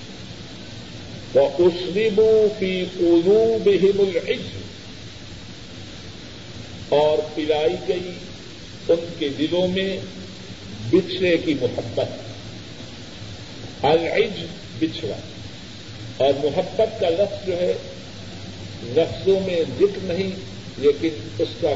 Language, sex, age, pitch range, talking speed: Urdu, male, 50-69, 150-200 Hz, 85 wpm